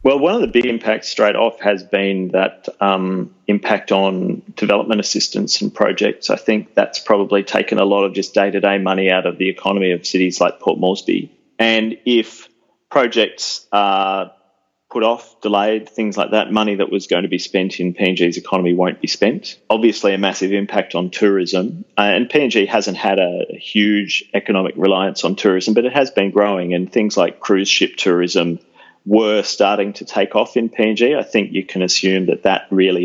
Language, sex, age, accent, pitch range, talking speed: English, male, 40-59, Australian, 95-105 Hz, 185 wpm